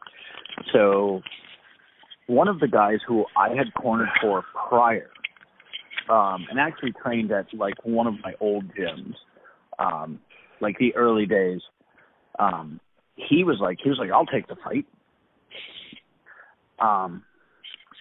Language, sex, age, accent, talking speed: English, male, 30-49, American, 130 wpm